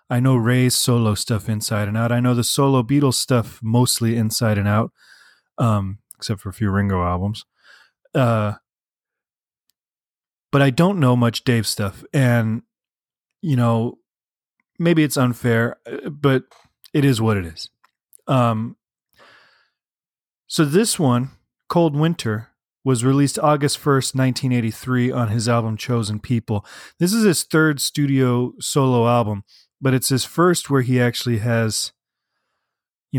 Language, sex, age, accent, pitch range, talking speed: English, male, 30-49, American, 115-140 Hz, 140 wpm